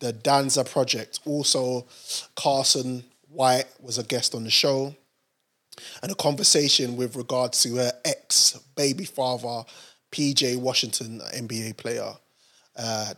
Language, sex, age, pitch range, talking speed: English, male, 20-39, 125-155 Hz, 125 wpm